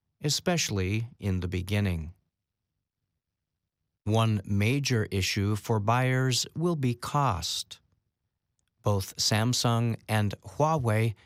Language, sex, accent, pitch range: English, male, American, 95-125 Hz